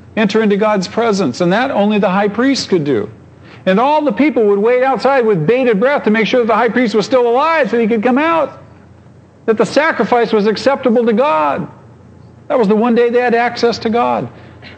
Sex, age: male, 50-69